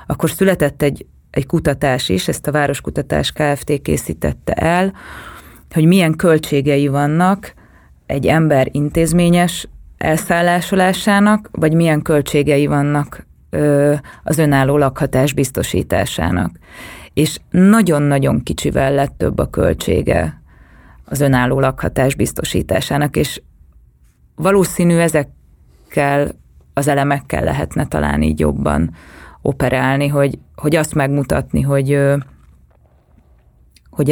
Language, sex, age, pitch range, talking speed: Hungarian, female, 20-39, 135-160 Hz, 95 wpm